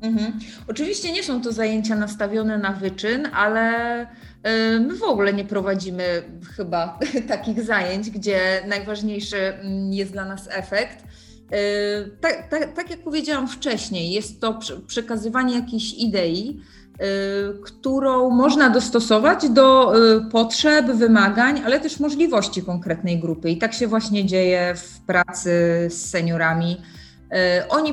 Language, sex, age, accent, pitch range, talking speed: Polish, female, 30-49, native, 185-230 Hz, 120 wpm